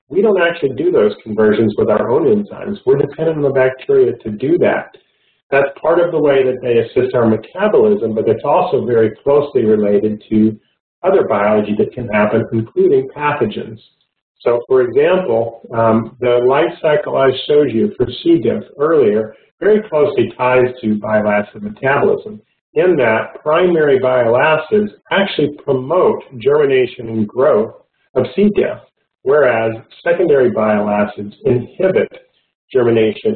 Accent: American